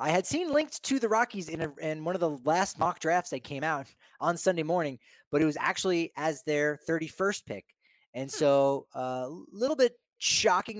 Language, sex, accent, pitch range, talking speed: English, male, American, 130-170 Hz, 210 wpm